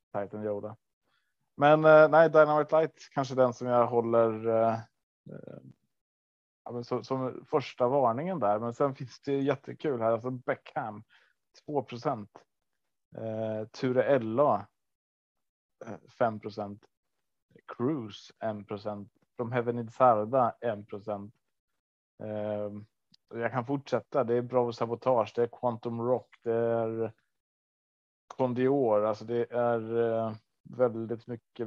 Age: 30-49